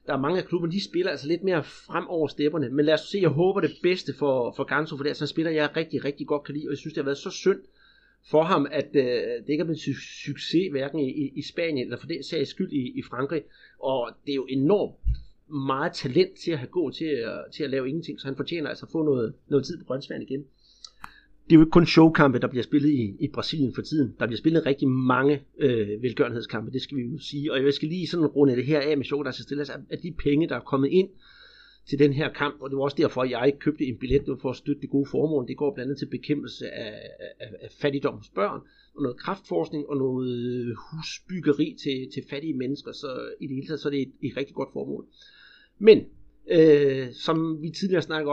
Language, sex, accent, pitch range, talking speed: Danish, male, native, 135-165 Hz, 255 wpm